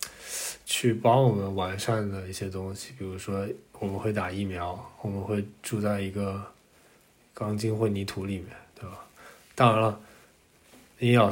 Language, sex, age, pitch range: Chinese, male, 20-39, 100-110 Hz